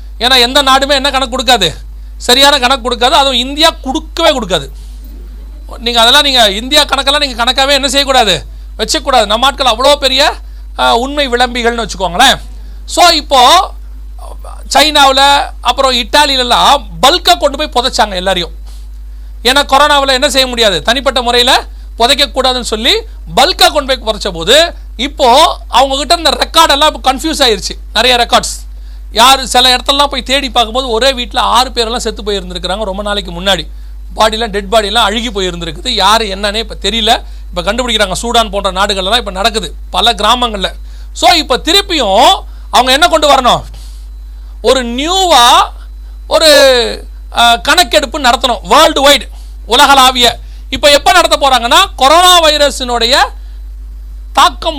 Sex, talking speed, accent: male, 130 wpm, native